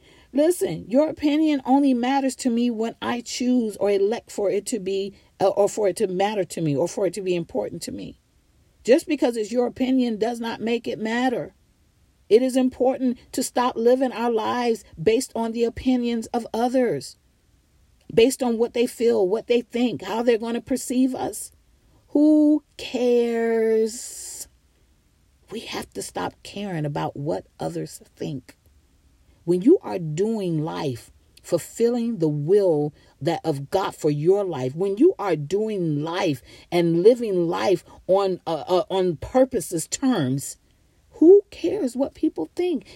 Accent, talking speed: American, 160 wpm